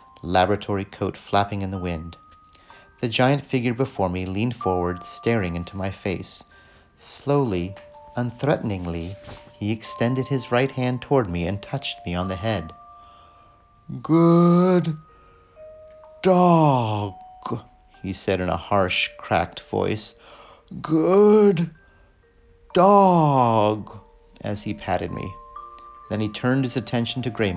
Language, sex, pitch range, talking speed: English, male, 95-145 Hz, 120 wpm